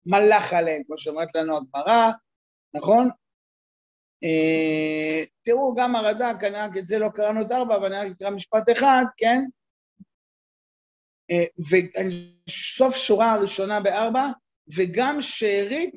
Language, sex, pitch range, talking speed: Hebrew, male, 195-255 Hz, 125 wpm